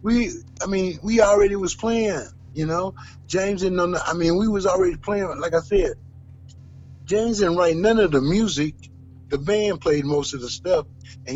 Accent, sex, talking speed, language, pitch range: American, male, 190 wpm, English, 120-180 Hz